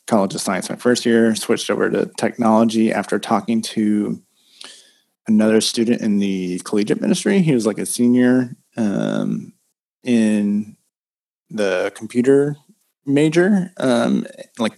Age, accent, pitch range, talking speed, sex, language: 20-39, American, 100-125 Hz, 125 wpm, male, English